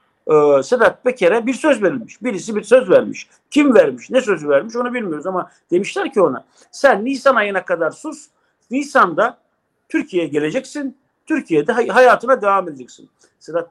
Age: 50-69